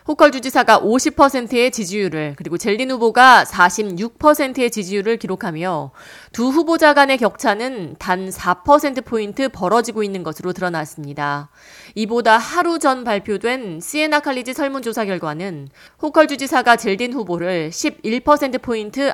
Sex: female